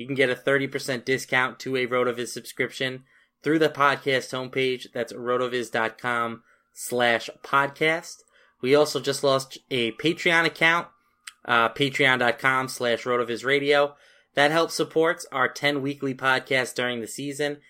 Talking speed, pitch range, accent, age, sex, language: 130 wpm, 125-145 Hz, American, 20-39, male, English